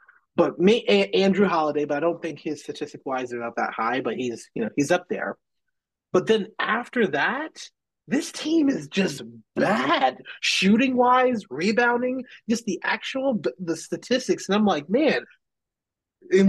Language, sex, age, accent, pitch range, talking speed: English, male, 30-49, American, 150-215 Hz, 165 wpm